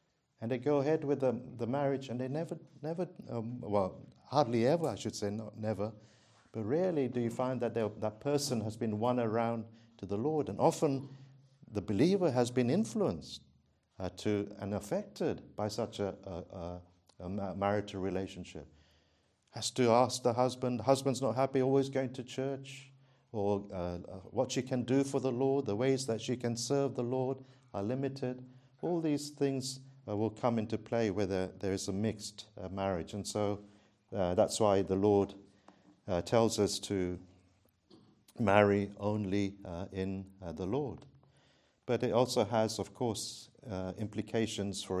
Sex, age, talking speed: male, 50-69, 170 wpm